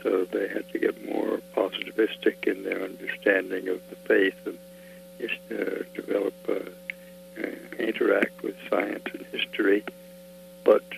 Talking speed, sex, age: 130 wpm, male, 60-79